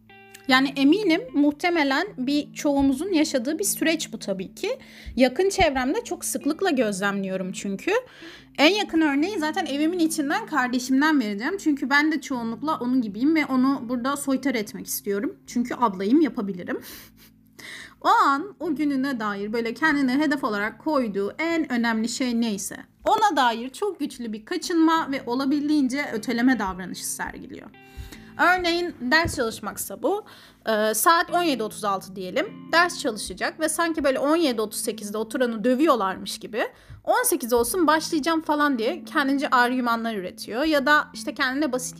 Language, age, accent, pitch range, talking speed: Turkish, 30-49, native, 230-310 Hz, 135 wpm